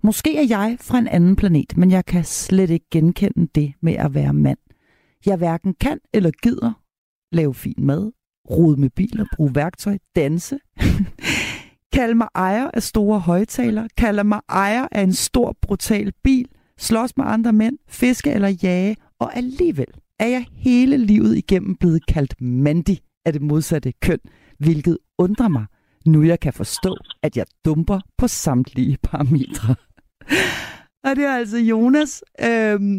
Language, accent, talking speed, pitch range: Danish, native, 155 wpm, 170-230 Hz